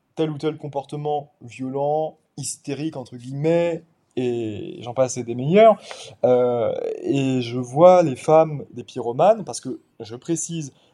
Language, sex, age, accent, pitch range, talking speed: French, male, 20-39, French, 130-170 Hz, 135 wpm